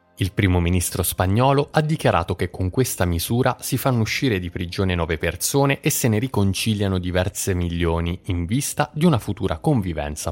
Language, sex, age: Italian, male, 20-39